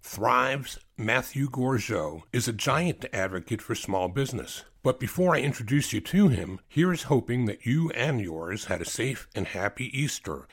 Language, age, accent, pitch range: English, 60-79, American, 100-140 Hz